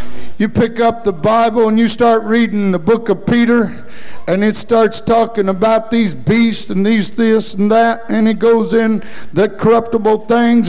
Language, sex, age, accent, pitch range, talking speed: English, male, 50-69, American, 150-230 Hz, 180 wpm